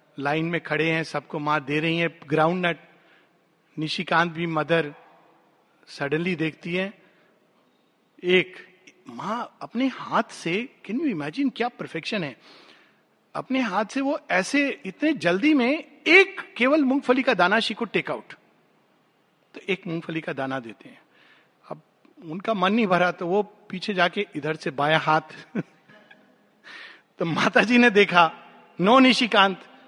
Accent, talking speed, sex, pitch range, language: native, 145 wpm, male, 160-245 Hz, Hindi